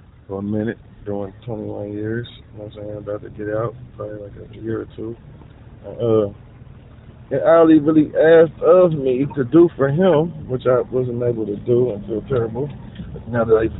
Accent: American